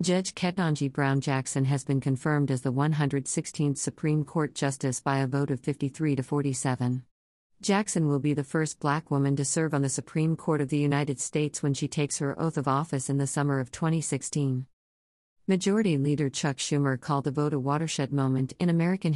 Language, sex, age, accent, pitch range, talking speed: English, female, 50-69, American, 130-155 Hz, 190 wpm